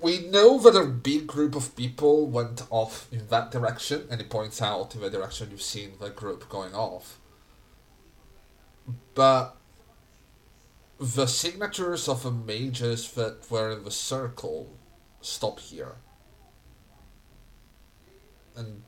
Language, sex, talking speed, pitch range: English, male, 125 wpm, 110-135 Hz